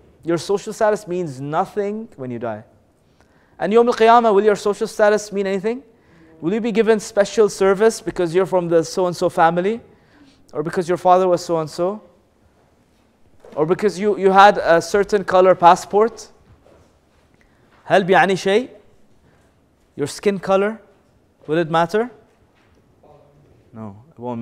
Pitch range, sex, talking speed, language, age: 115-190 Hz, male, 130 wpm, English, 20-39